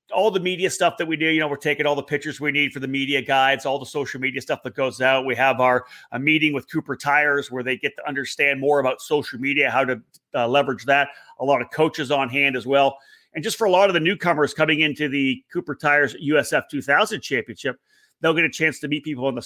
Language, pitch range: English, 130-160 Hz